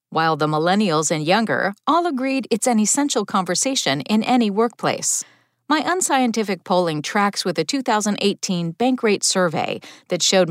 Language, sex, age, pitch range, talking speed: English, female, 40-59, 180-250 Hz, 150 wpm